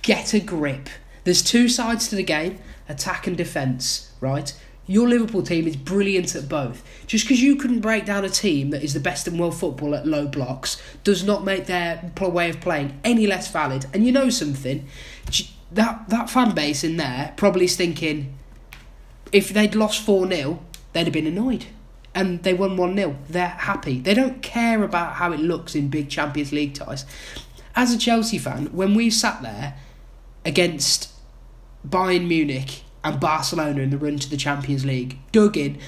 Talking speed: 180 wpm